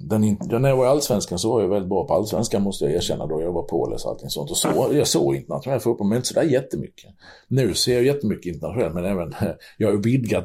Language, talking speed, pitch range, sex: Swedish, 260 wpm, 90-115 Hz, male